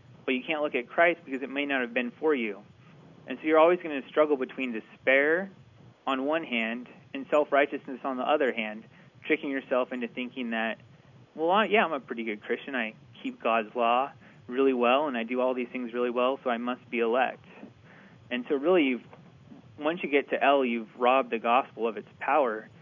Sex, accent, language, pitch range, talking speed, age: male, American, English, 120-150 Hz, 205 wpm, 30-49